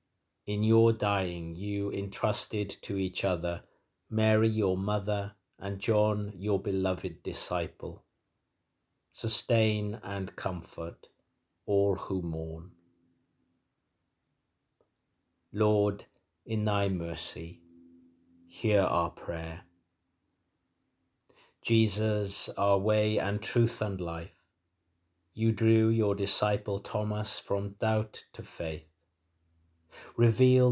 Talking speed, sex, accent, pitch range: 90 wpm, male, British, 85-110 Hz